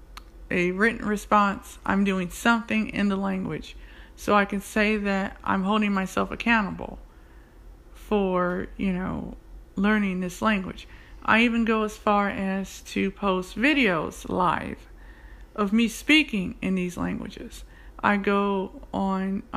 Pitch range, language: 180-215 Hz, English